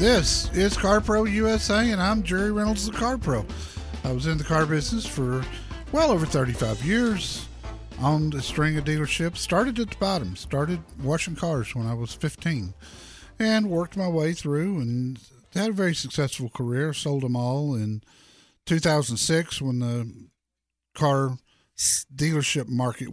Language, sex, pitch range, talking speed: English, male, 115-165 Hz, 155 wpm